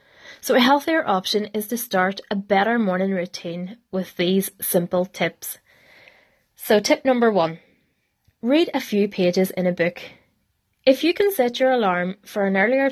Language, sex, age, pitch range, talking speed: English, female, 20-39, 185-235 Hz, 165 wpm